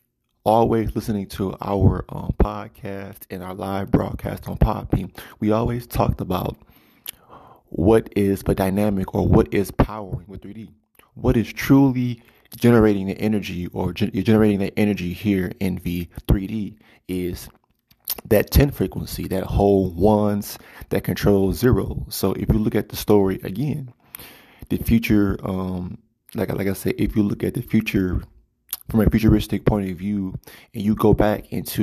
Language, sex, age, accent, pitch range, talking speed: English, male, 20-39, American, 95-110 Hz, 155 wpm